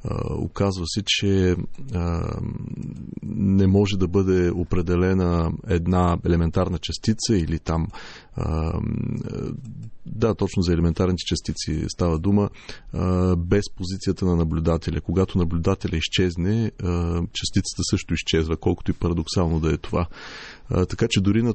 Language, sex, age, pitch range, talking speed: Bulgarian, male, 30-49, 90-110 Hz, 125 wpm